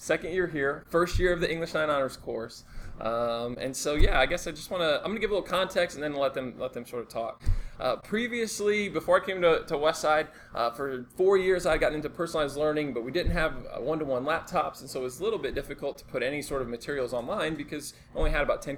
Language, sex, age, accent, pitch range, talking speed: English, male, 20-39, American, 135-190 Hz, 260 wpm